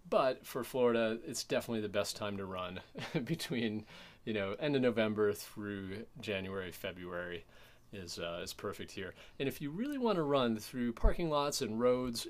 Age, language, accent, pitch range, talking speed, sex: 30-49, English, American, 100-125 Hz, 175 wpm, male